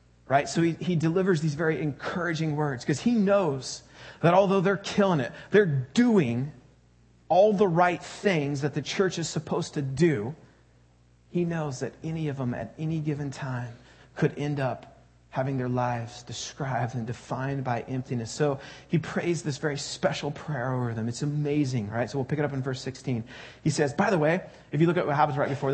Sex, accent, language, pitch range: male, American, English, 135-165 Hz